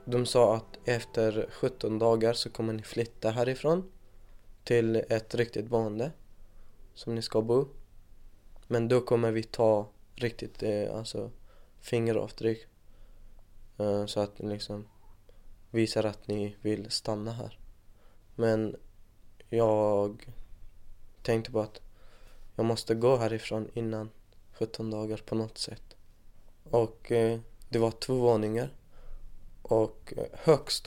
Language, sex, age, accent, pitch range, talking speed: Swedish, male, 20-39, native, 105-120 Hz, 115 wpm